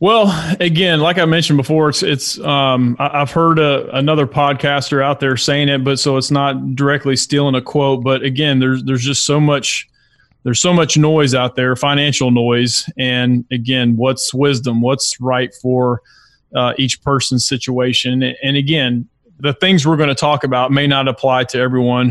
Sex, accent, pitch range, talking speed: male, American, 125-150 Hz, 185 wpm